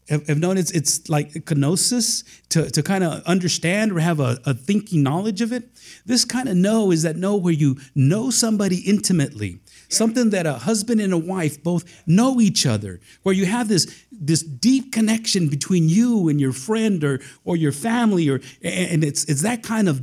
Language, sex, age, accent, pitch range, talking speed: English, male, 50-69, American, 140-195 Hz, 195 wpm